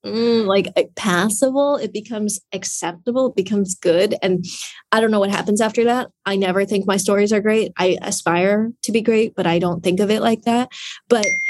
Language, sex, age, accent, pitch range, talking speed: English, female, 20-39, American, 180-240 Hz, 195 wpm